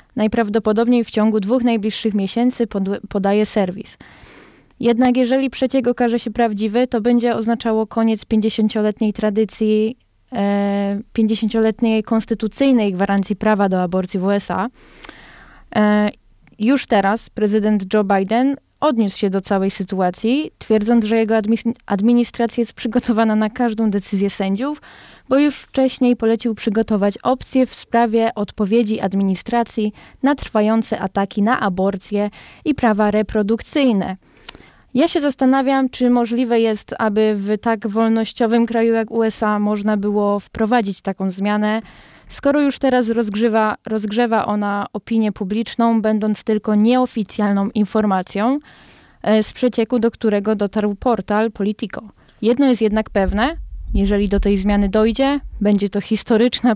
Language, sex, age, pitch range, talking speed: Polish, female, 20-39, 205-235 Hz, 120 wpm